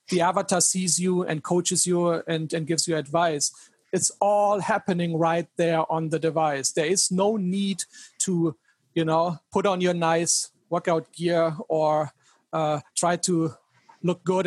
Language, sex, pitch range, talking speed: English, male, 155-180 Hz, 160 wpm